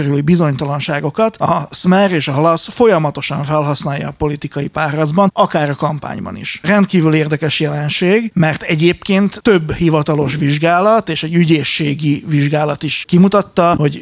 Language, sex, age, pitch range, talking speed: Hungarian, male, 30-49, 150-180 Hz, 130 wpm